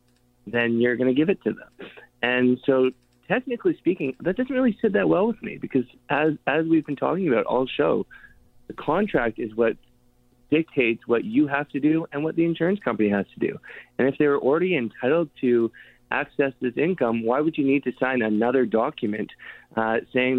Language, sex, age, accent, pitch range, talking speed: English, male, 20-39, American, 120-145 Hz, 195 wpm